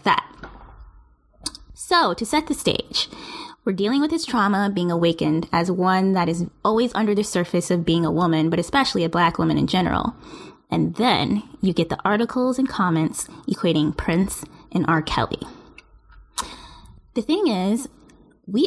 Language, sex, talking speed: English, female, 160 wpm